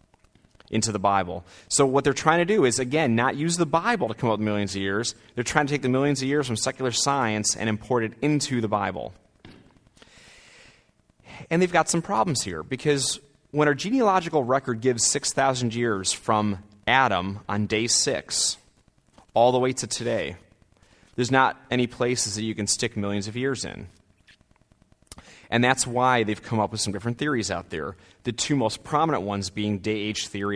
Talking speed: 185 wpm